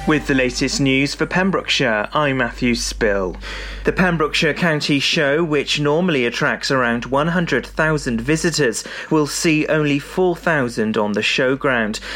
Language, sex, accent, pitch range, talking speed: English, male, British, 125-155 Hz, 130 wpm